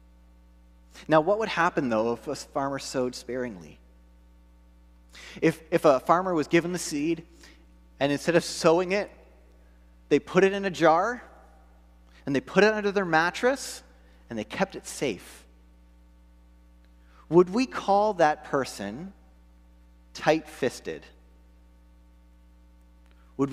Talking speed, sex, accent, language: 120 wpm, male, American, English